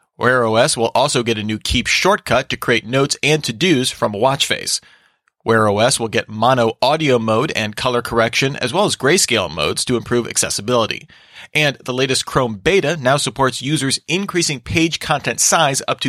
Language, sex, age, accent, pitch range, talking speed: English, male, 30-49, American, 115-150 Hz, 185 wpm